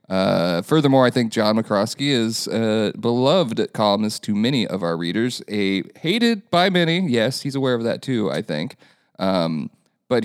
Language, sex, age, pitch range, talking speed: English, male, 30-49, 100-120 Hz, 170 wpm